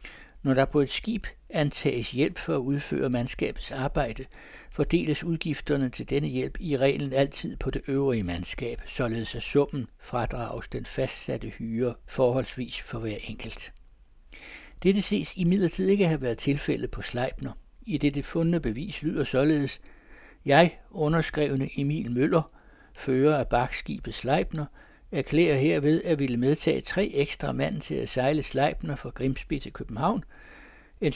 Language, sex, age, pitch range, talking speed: Danish, male, 60-79, 125-155 Hz, 150 wpm